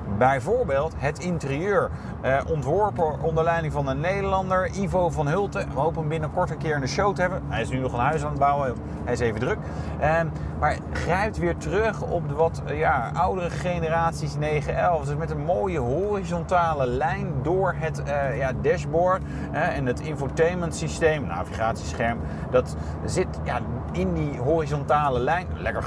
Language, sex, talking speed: Dutch, male, 175 wpm